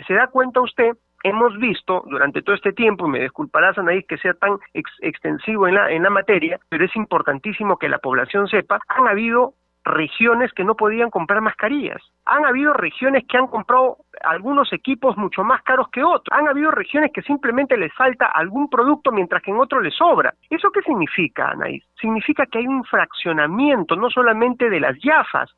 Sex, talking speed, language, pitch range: male, 190 wpm, Spanish, 195-275 Hz